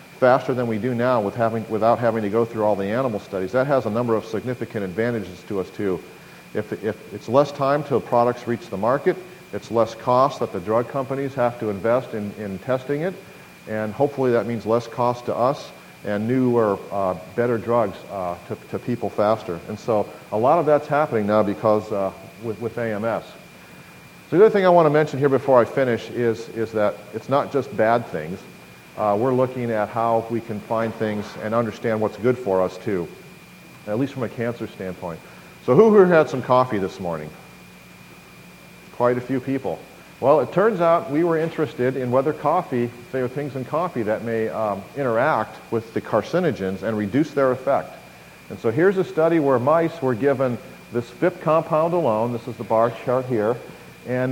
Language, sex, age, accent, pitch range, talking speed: English, male, 40-59, American, 110-135 Hz, 195 wpm